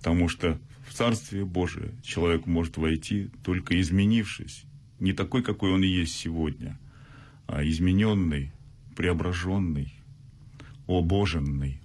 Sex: male